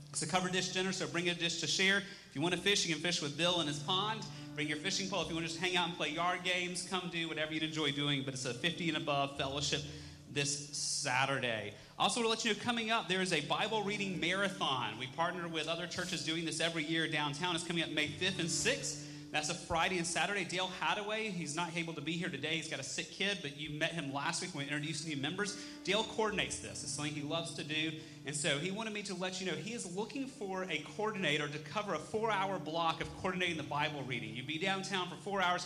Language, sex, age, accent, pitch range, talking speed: English, male, 30-49, American, 150-180 Hz, 260 wpm